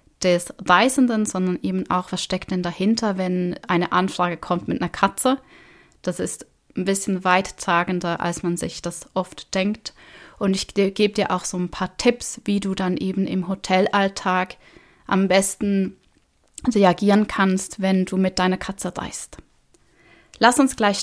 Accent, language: German, German